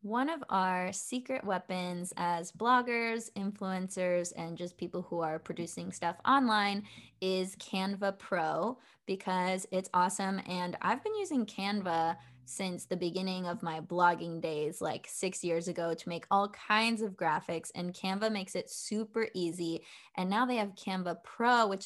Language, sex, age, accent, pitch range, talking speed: English, female, 20-39, American, 180-215 Hz, 155 wpm